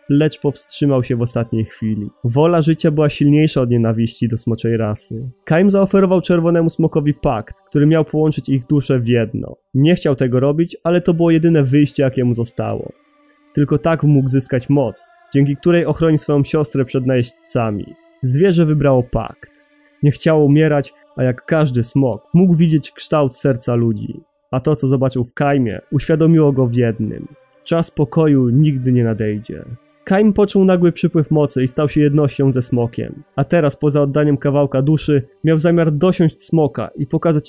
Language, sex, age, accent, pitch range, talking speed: Polish, male, 20-39, native, 130-165 Hz, 165 wpm